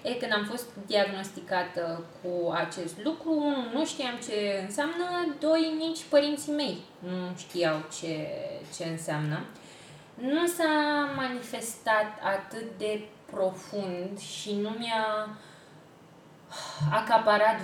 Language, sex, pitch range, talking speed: Romanian, female, 170-235 Hz, 105 wpm